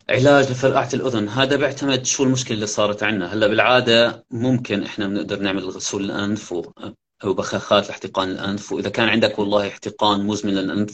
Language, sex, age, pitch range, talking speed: Arabic, male, 30-49, 95-105 Hz, 160 wpm